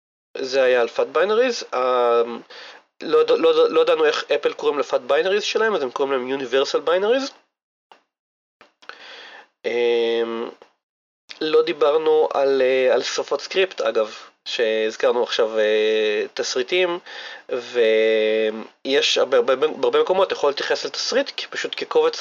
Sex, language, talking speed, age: male, Hebrew, 110 wpm, 30-49